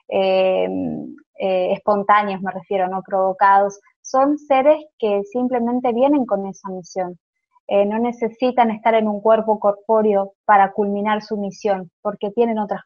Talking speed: 140 wpm